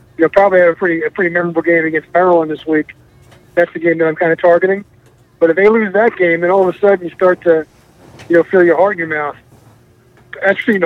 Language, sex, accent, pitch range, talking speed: English, male, American, 155-185 Hz, 250 wpm